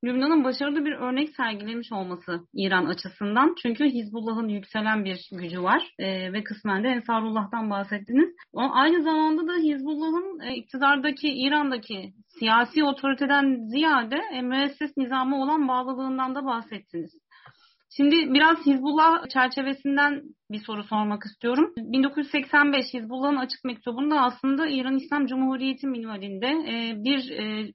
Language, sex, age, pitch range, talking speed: Turkish, female, 30-49, 225-280 Hz, 125 wpm